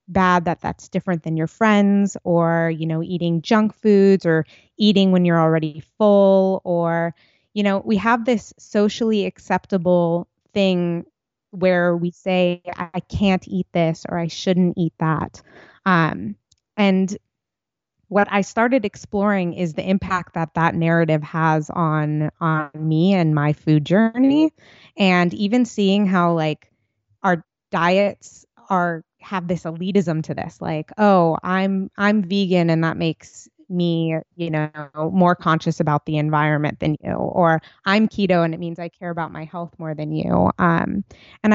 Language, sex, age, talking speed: English, female, 20-39, 155 wpm